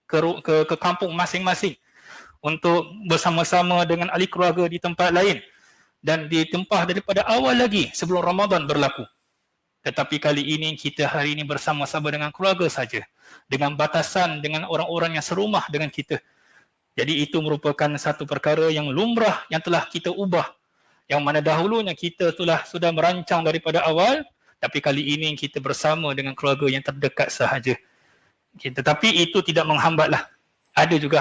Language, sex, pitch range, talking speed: Malay, male, 150-175 Hz, 145 wpm